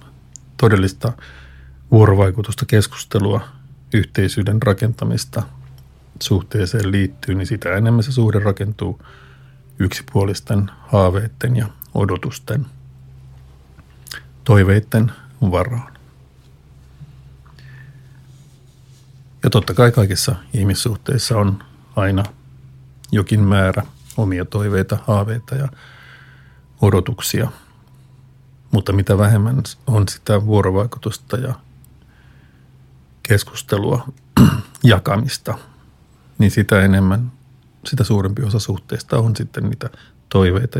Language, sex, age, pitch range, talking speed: Finnish, male, 50-69, 95-130 Hz, 80 wpm